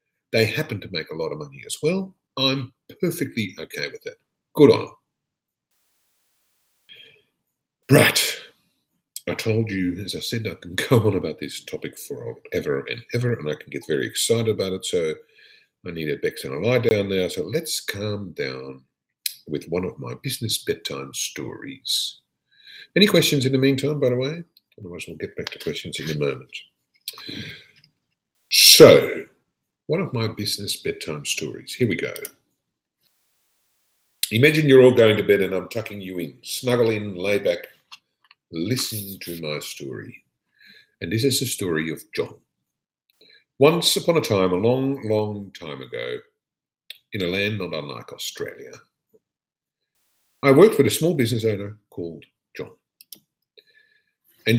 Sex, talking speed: male, 155 wpm